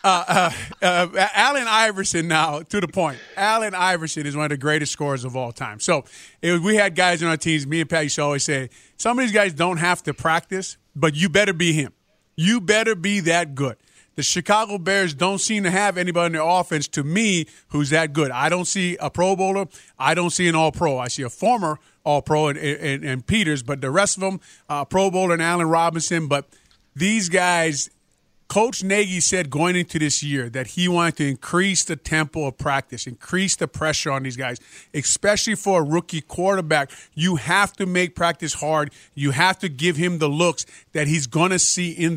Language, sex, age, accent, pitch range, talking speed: English, male, 30-49, American, 150-185 Hz, 215 wpm